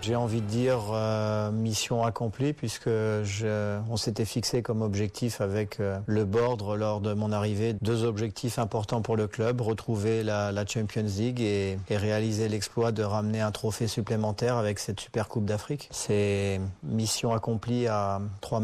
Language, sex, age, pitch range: Arabic, male, 40-59, 105-120 Hz